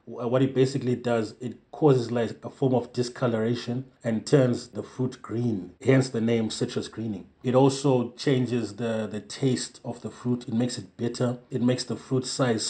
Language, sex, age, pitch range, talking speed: English, male, 30-49, 115-125 Hz, 185 wpm